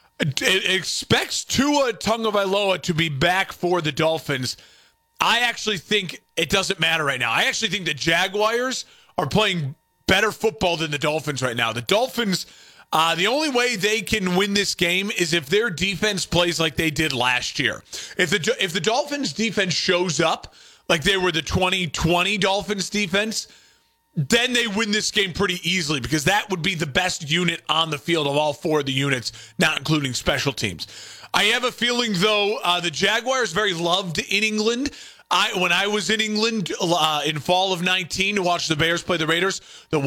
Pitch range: 165-210 Hz